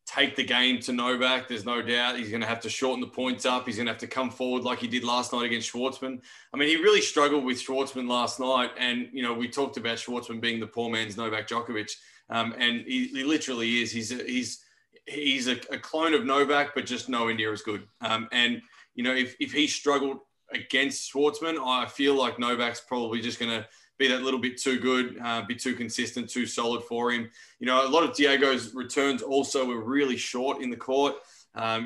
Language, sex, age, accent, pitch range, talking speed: English, male, 20-39, Australian, 120-135 Hz, 230 wpm